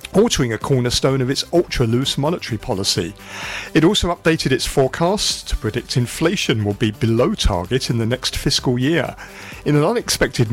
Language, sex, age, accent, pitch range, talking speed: English, male, 50-69, British, 110-160 Hz, 160 wpm